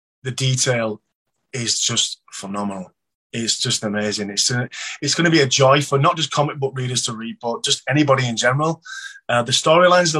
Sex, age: male, 20-39